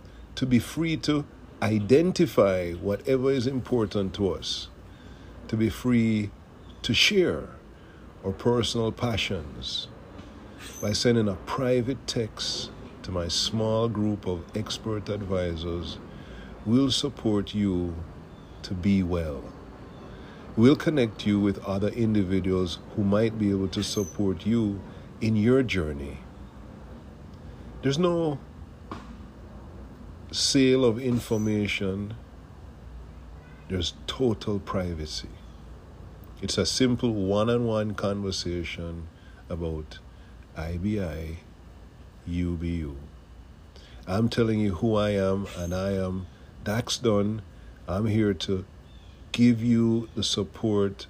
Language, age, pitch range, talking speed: English, 50-69, 85-110 Hz, 100 wpm